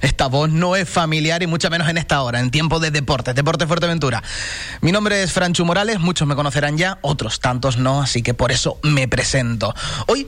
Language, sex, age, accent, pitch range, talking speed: Spanish, male, 30-49, Spanish, 140-205 Hz, 210 wpm